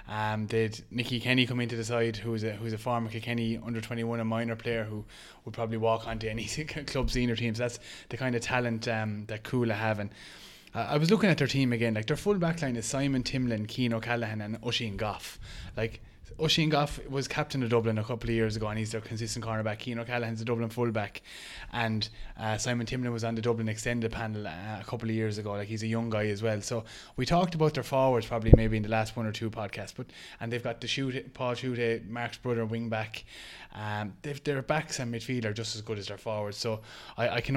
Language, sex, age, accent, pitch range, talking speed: English, male, 20-39, Irish, 110-125 Hz, 235 wpm